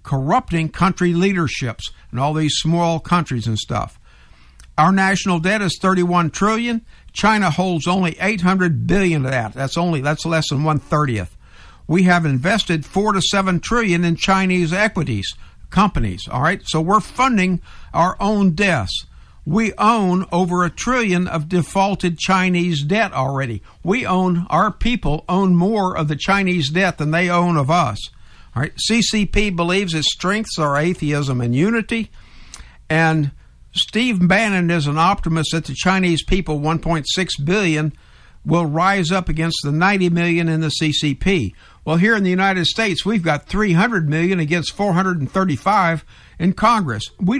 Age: 60-79